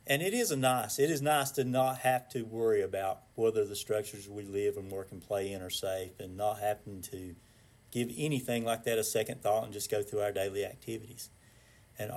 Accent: American